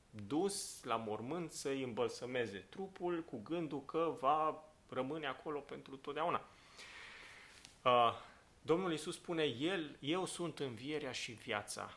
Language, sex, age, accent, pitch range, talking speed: Romanian, male, 30-49, native, 110-135 Hz, 110 wpm